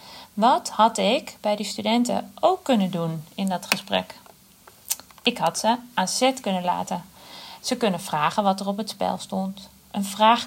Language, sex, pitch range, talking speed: Dutch, female, 195-235 Hz, 170 wpm